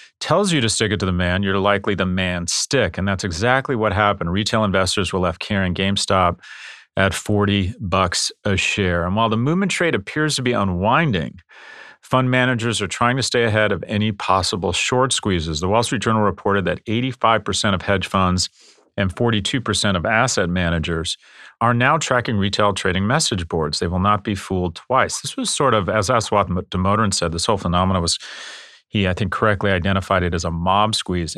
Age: 40-59